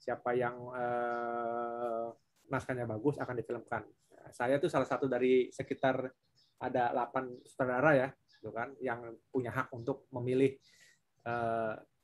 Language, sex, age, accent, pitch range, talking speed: Indonesian, male, 20-39, native, 115-135 Hz, 125 wpm